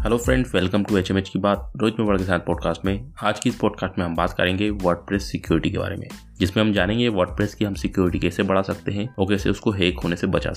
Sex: male